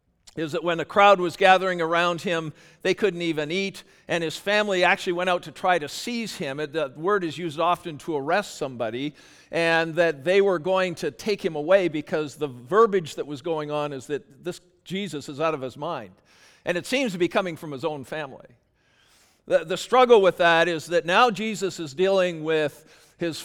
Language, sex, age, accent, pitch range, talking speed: English, male, 50-69, American, 150-185 Hz, 205 wpm